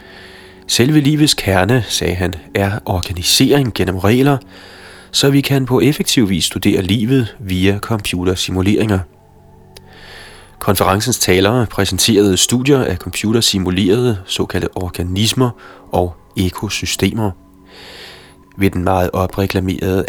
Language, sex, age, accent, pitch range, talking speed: Danish, male, 30-49, native, 90-110 Hz, 100 wpm